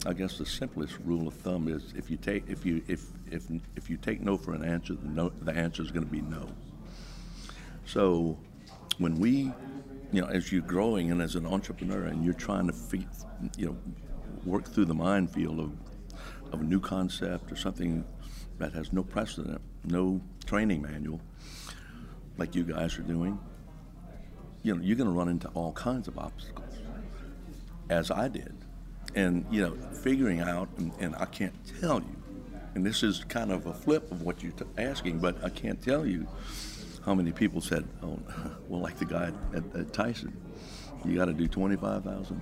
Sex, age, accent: male, 60-79, American